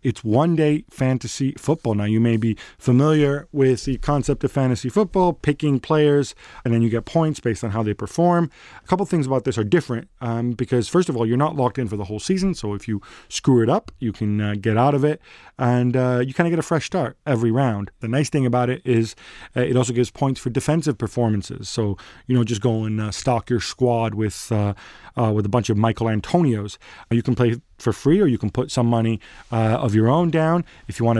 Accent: American